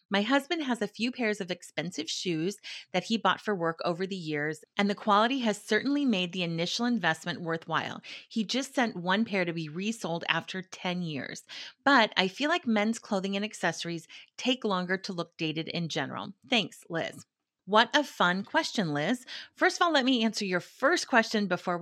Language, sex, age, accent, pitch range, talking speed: English, female, 30-49, American, 170-235 Hz, 195 wpm